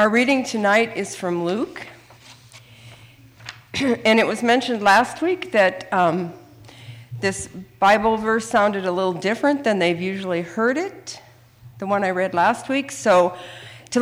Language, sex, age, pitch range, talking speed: English, female, 50-69, 155-240 Hz, 145 wpm